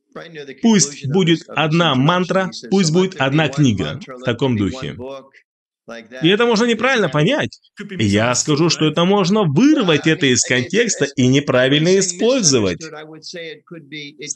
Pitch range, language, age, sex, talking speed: 130-180 Hz, Russian, 20-39, male, 115 wpm